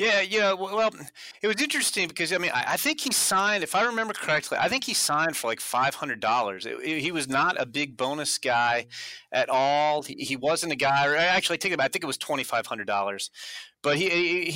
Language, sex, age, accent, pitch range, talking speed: English, male, 30-49, American, 135-185 Hz, 210 wpm